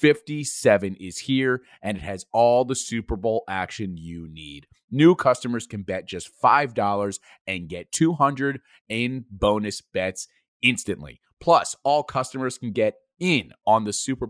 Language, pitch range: English, 95-130 Hz